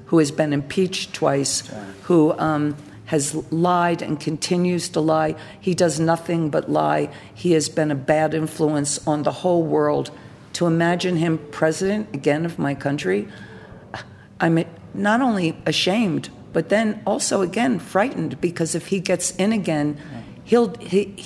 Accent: American